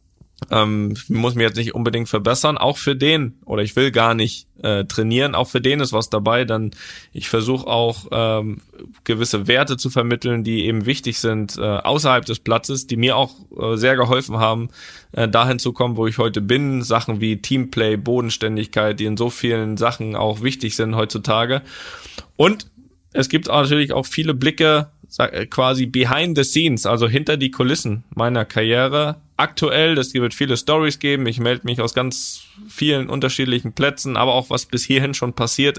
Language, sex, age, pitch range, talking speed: German, male, 10-29, 115-135 Hz, 185 wpm